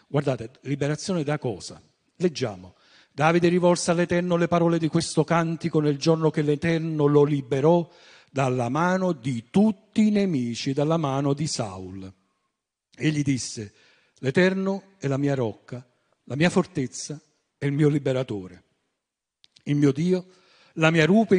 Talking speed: 135 wpm